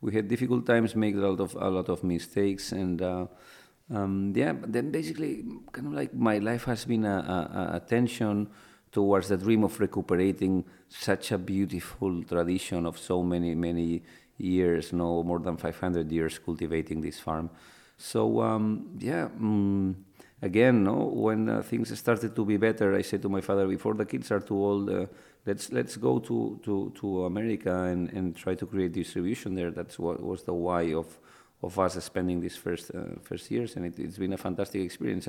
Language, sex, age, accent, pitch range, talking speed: English, male, 40-59, Spanish, 90-110 Hz, 195 wpm